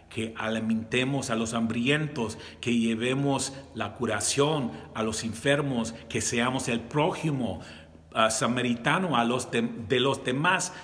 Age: 40-59